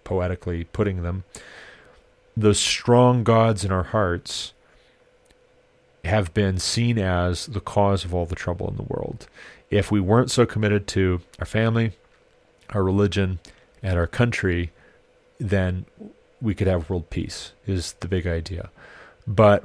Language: English